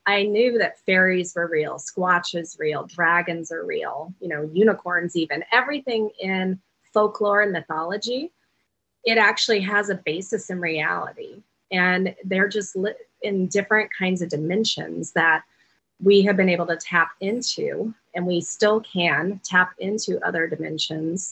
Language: English